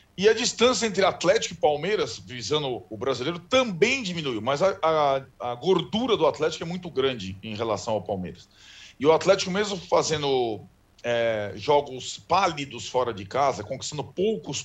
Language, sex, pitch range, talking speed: Portuguese, male, 135-180 Hz, 160 wpm